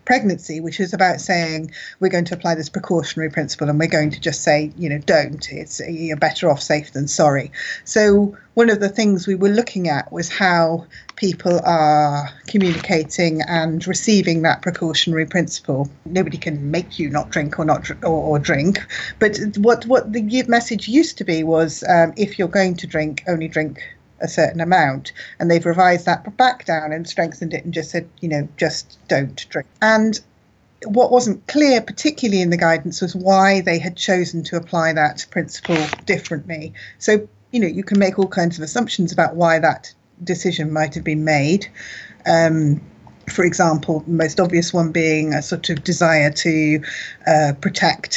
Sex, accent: female, British